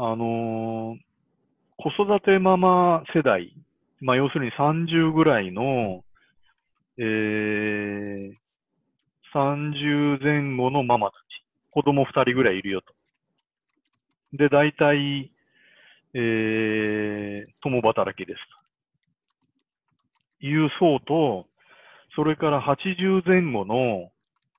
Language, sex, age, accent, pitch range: Japanese, male, 40-59, native, 115-155 Hz